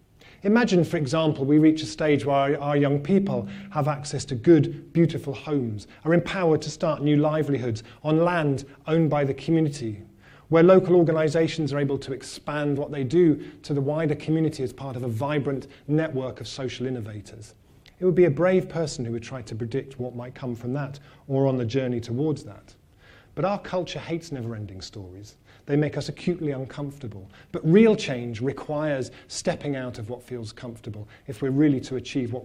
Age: 40-59